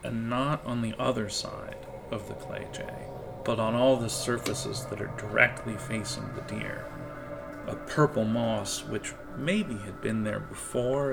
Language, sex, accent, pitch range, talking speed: English, male, American, 105-130 Hz, 160 wpm